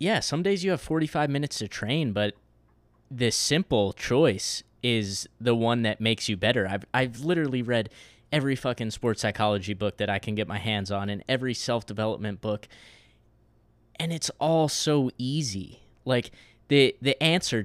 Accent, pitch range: American, 105-125 Hz